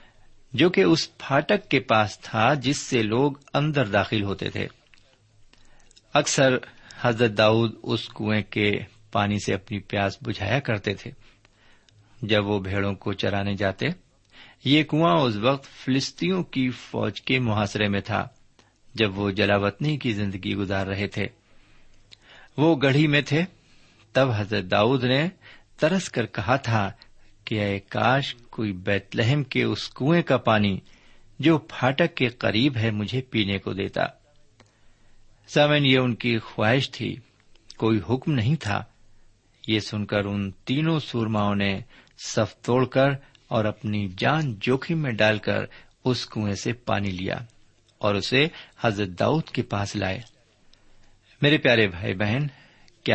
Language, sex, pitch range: Urdu, male, 105-130 Hz